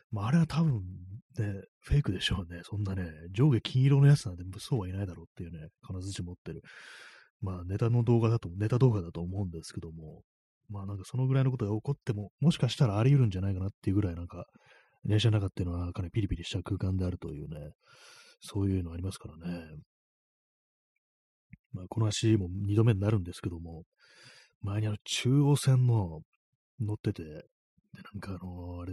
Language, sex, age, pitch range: Japanese, male, 30-49, 90-120 Hz